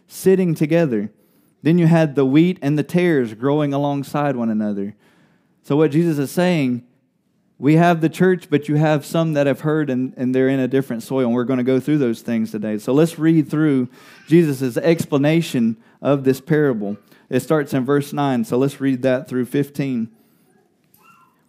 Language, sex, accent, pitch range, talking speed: English, male, American, 135-165 Hz, 185 wpm